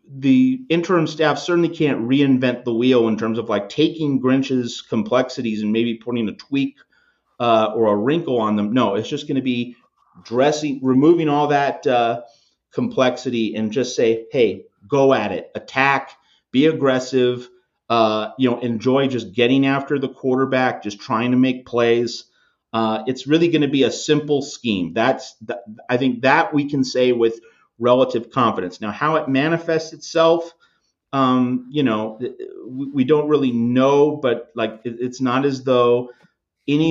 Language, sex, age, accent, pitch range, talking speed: English, male, 30-49, American, 115-145 Hz, 165 wpm